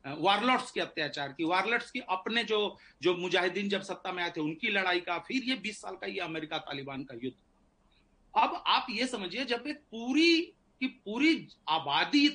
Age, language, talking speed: 40-59, Hindi, 185 wpm